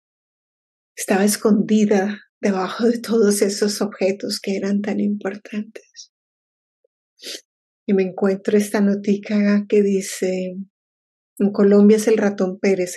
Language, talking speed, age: English, 110 wpm, 30-49